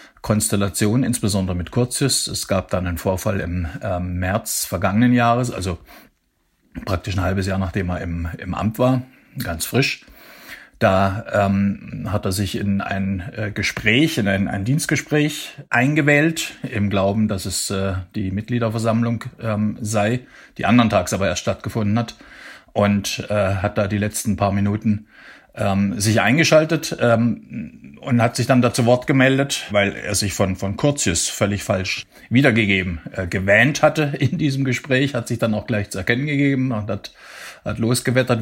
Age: 50-69